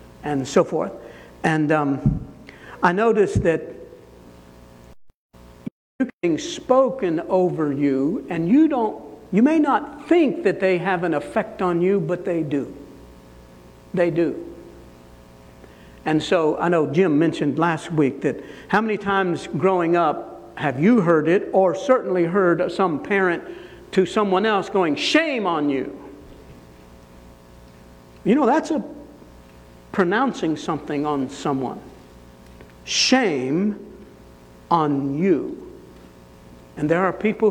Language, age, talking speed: English, 60-79, 125 wpm